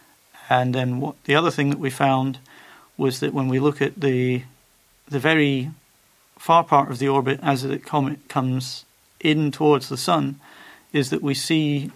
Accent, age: British, 40-59